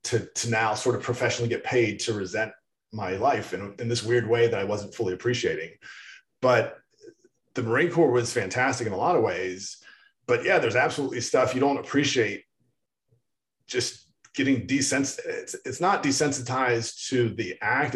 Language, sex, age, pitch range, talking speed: English, male, 30-49, 115-145 Hz, 170 wpm